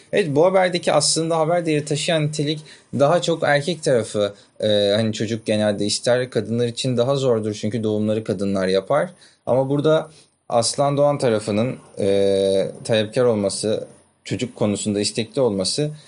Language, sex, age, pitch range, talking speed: Turkish, male, 30-49, 110-155 Hz, 140 wpm